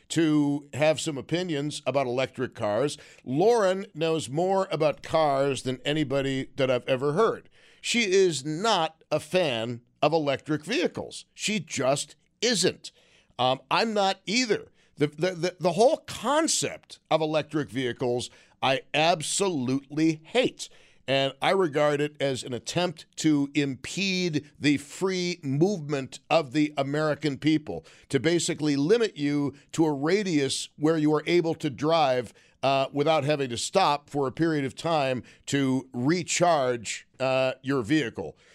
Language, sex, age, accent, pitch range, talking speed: English, male, 50-69, American, 135-175 Hz, 140 wpm